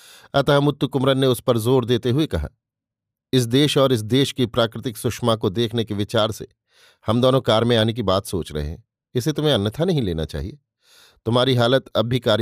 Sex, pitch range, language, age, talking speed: male, 110-130 Hz, Hindi, 50-69, 215 wpm